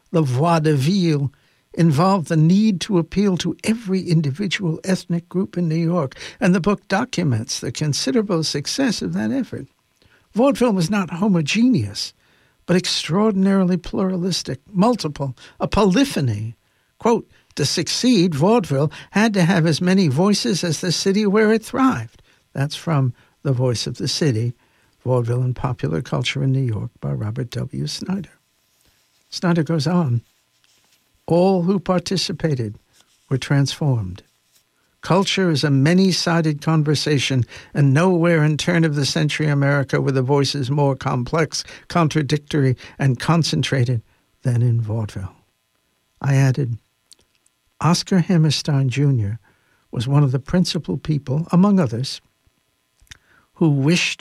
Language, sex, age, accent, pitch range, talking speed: English, male, 60-79, American, 130-180 Hz, 130 wpm